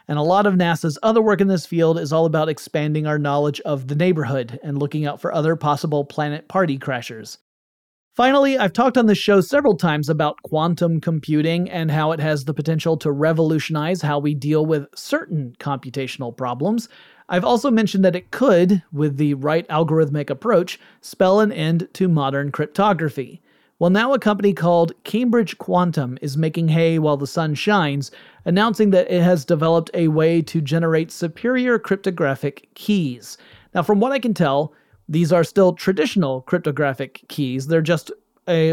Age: 30-49